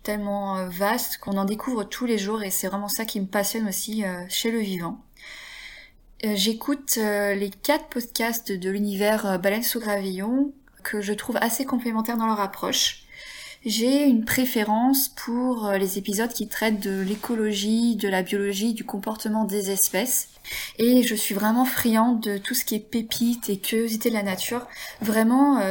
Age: 20-39